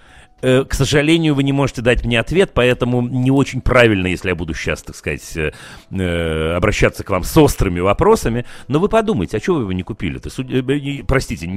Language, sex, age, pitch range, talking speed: Russian, male, 40-59, 105-145 Hz, 180 wpm